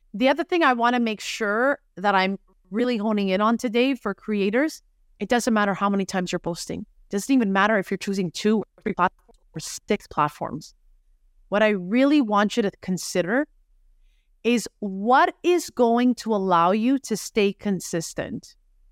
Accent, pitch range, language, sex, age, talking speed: American, 190-270 Hz, English, female, 30-49, 180 wpm